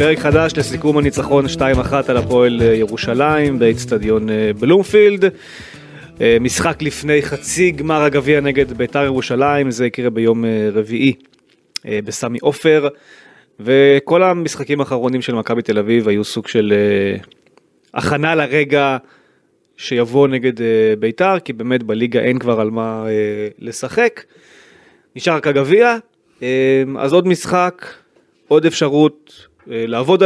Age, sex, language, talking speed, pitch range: 20-39, male, Hebrew, 110 wpm, 115-150 Hz